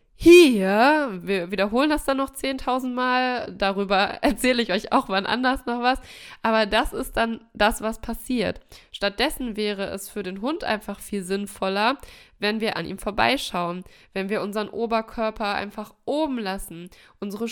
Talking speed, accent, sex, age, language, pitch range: 160 wpm, German, female, 20-39, German, 200-250 Hz